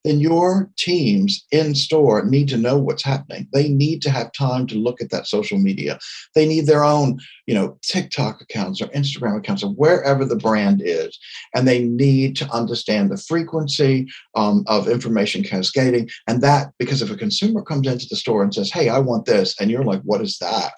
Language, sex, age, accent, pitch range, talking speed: English, male, 60-79, American, 115-165 Hz, 200 wpm